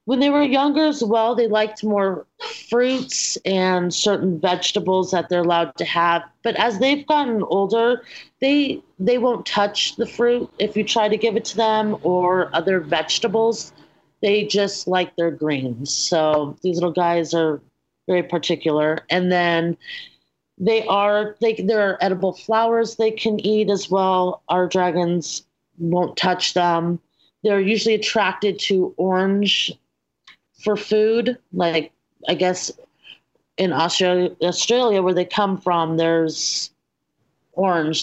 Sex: female